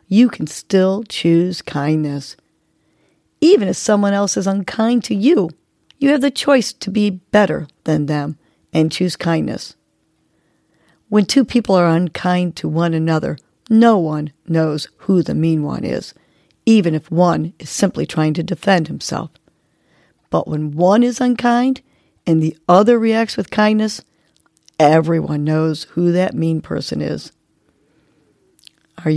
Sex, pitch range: female, 155-210 Hz